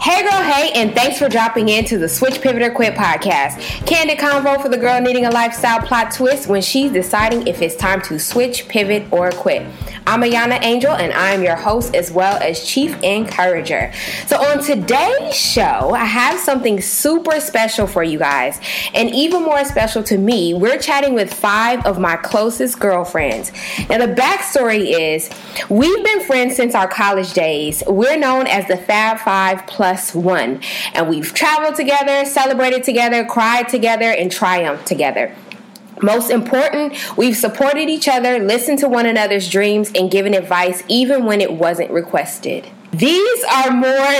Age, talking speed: 20-39, 170 wpm